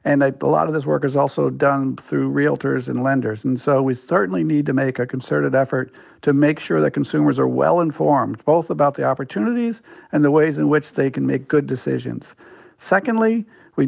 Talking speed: 200 wpm